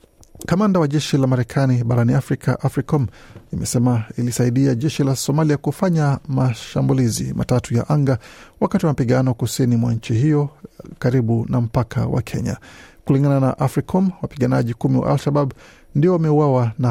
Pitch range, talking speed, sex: 120-145 Hz, 140 wpm, male